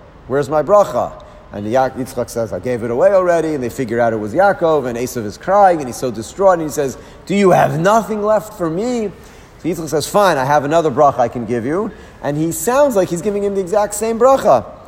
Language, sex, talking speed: English, male, 240 wpm